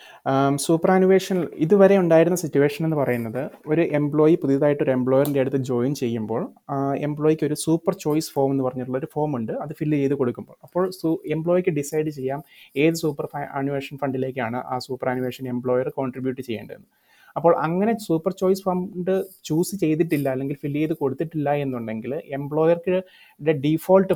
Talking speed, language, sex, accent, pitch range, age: 140 wpm, Malayalam, male, native, 135-160 Hz, 30-49